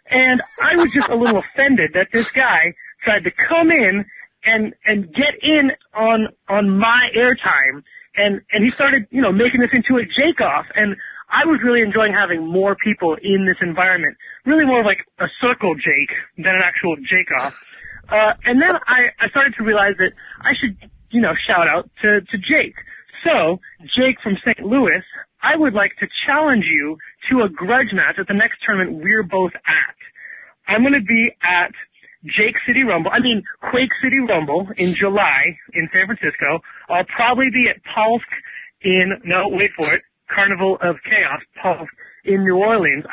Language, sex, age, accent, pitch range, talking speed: English, female, 20-39, American, 180-240 Hz, 180 wpm